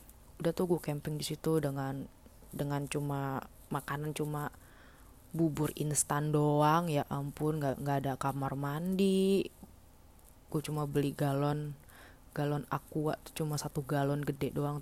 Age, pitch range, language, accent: 20-39, 135-155 Hz, Indonesian, native